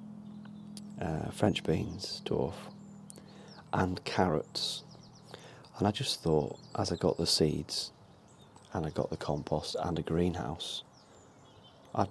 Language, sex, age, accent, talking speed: English, male, 30-49, British, 120 wpm